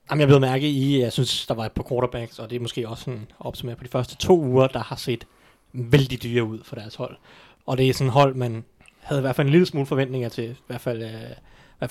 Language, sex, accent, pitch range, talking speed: Danish, male, native, 125-145 Hz, 275 wpm